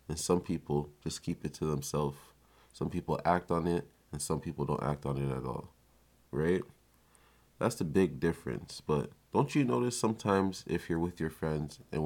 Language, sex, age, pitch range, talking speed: English, male, 20-39, 75-90 Hz, 190 wpm